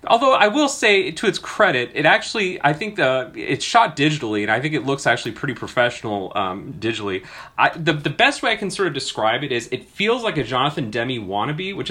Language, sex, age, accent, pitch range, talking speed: English, male, 30-49, American, 110-155 Hz, 225 wpm